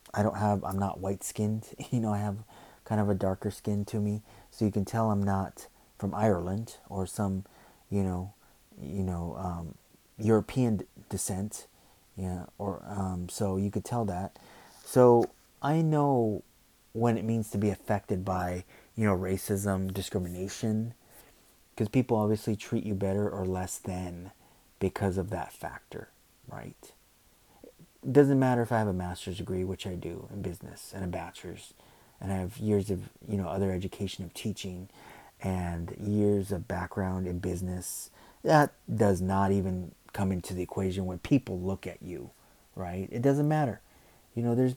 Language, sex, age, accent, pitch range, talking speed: English, male, 30-49, American, 95-110 Hz, 170 wpm